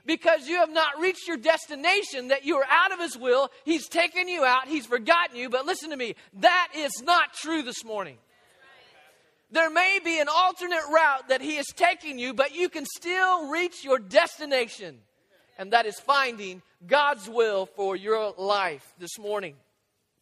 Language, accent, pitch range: English, American, 245-330 Hz